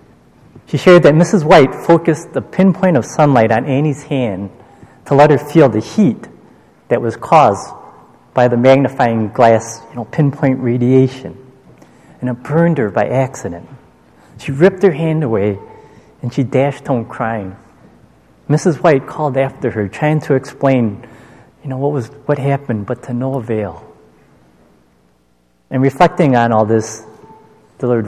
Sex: male